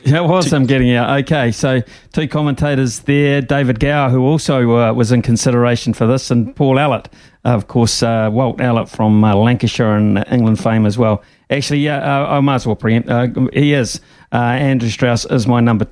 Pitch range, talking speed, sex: 115-135 Hz, 210 wpm, male